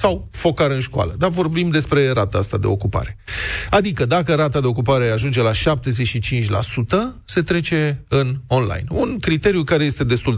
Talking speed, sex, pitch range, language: 160 wpm, male, 120-185 Hz, Romanian